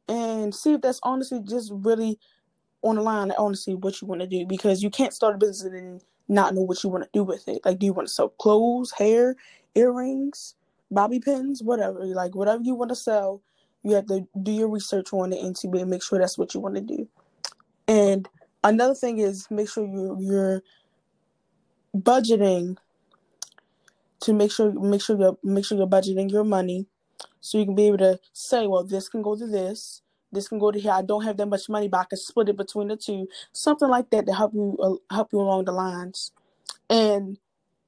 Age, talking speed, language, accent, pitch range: 20-39, 205 wpm, English, American, 190-220 Hz